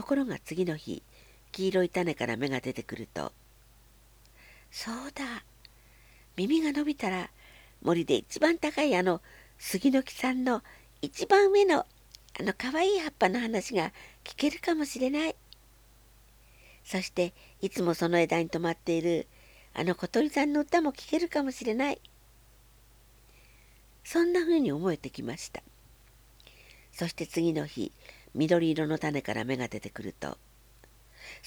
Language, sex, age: Japanese, female, 60-79